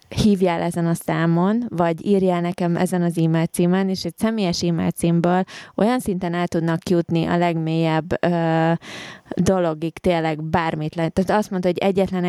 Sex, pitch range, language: female, 170-190 Hz, Hungarian